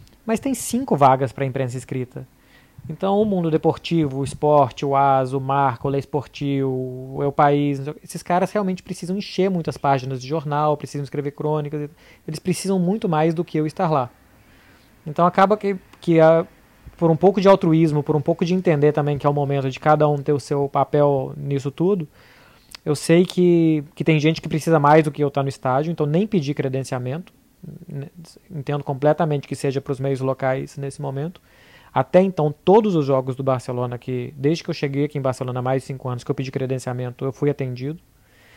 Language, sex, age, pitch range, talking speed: Portuguese, male, 20-39, 135-165 Hz, 200 wpm